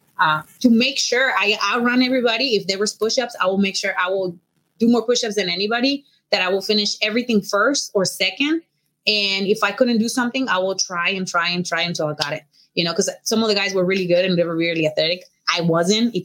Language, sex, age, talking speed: English, female, 20-39, 240 wpm